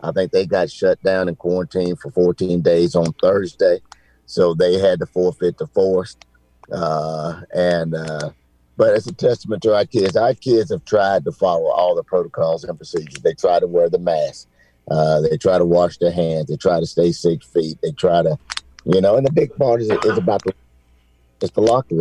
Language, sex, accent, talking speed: English, male, American, 205 wpm